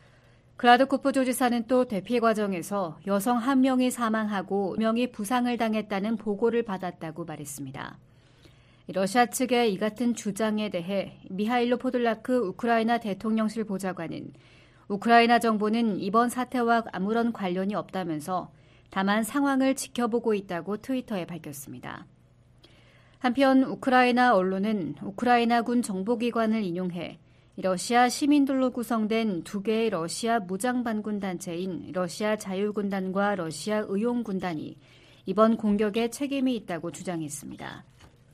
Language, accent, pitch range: Korean, native, 180-240 Hz